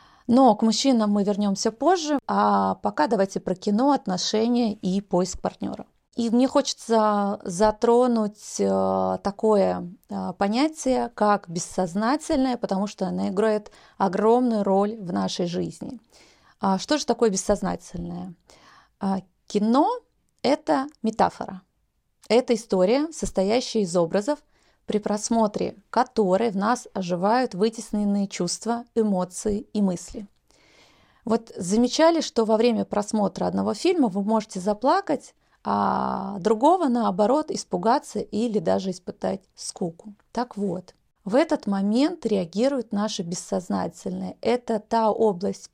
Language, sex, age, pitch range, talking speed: Russian, female, 30-49, 195-245 Hz, 115 wpm